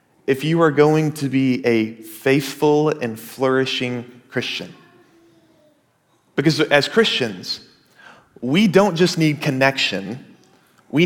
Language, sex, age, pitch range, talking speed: English, male, 30-49, 135-170 Hz, 110 wpm